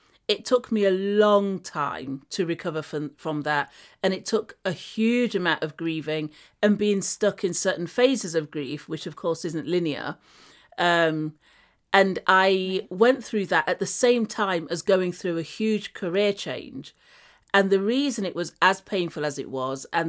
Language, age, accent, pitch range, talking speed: English, 40-59, British, 165-205 Hz, 180 wpm